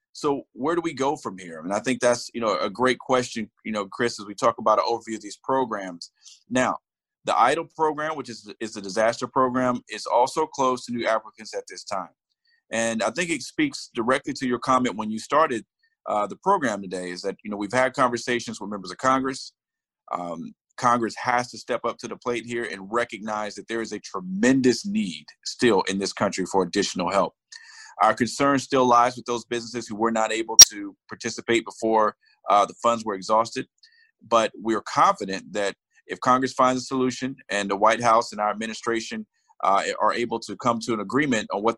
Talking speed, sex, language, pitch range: 210 wpm, male, English, 110-135 Hz